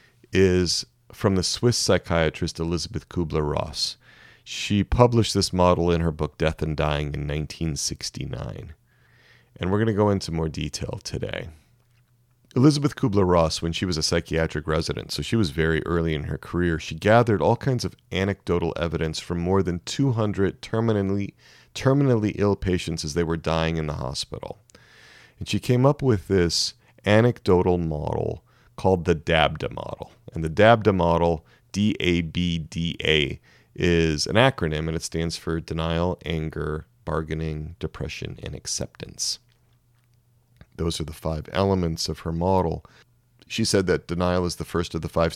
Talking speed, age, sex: 150 wpm, 30-49, male